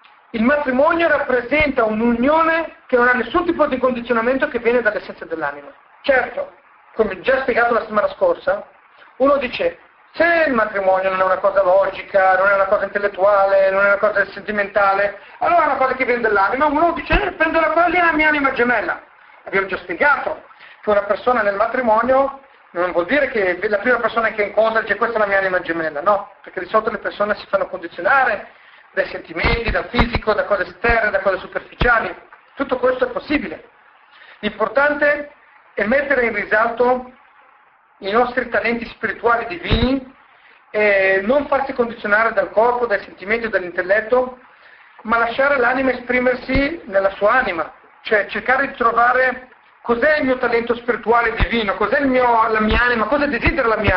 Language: Italian